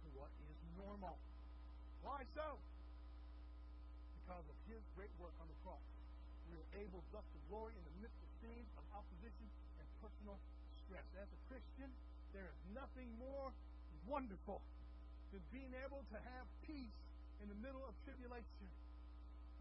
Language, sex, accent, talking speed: English, male, American, 155 wpm